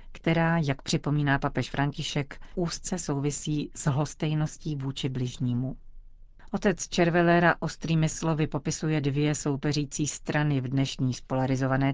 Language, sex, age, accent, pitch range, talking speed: Czech, female, 40-59, native, 140-160 Hz, 110 wpm